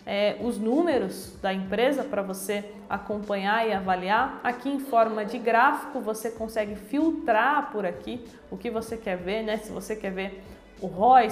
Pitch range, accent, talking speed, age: 215-255 Hz, Brazilian, 170 wpm, 20-39